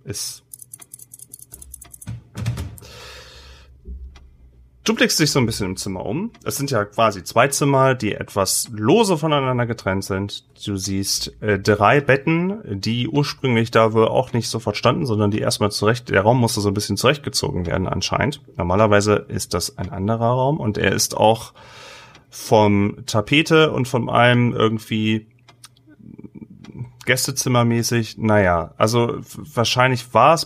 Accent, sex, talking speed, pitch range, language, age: German, male, 140 wpm, 100-130 Hz, German, 30-49